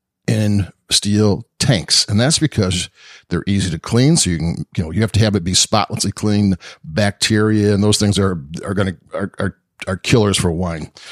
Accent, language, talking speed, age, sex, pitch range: American, English, 195 wpm, 50-69, male, 100-120 Hz